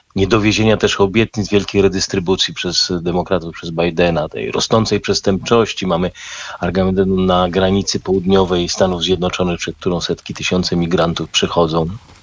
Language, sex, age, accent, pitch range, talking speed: Polish, male, 40-59, native, 90-110 Hz, 125 wpm